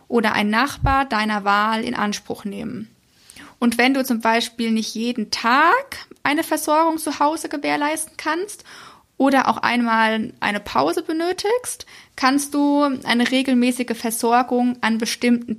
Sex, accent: female, German